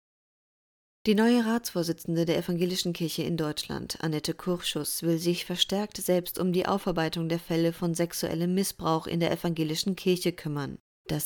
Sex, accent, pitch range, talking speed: female, German, 160-185 Hz, 150 wpm